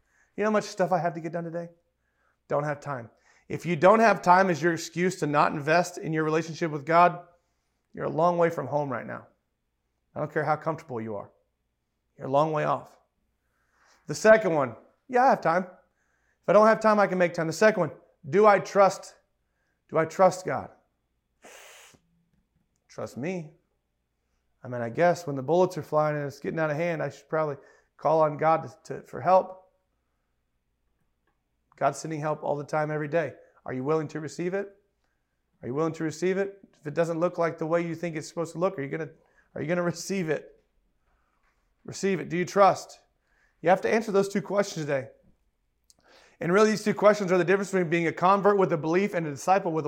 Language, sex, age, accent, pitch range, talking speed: English, male, 30-49, American, 145-190 Hz, 205 wpm